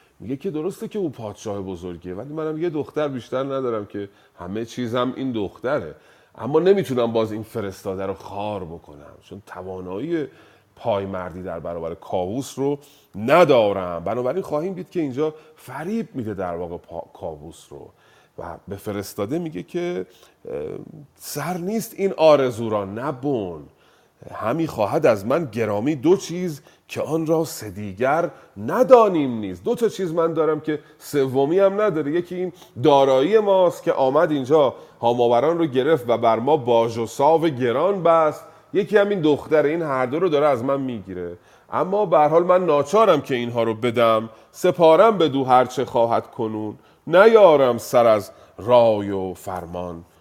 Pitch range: 105-160 Hz